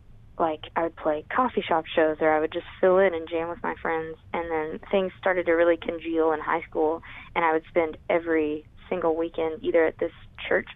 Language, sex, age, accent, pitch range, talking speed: English, female, 20-39, American, 155-195 Hz, 220 wpm